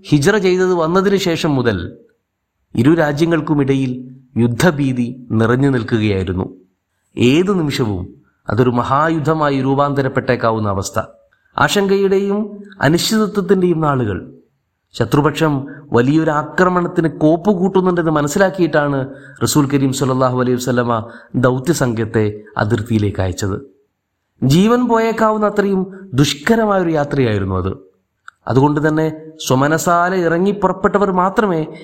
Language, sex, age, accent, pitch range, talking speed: Malayalam, male, 30-49, native, 125-180 Hz, 85 wpm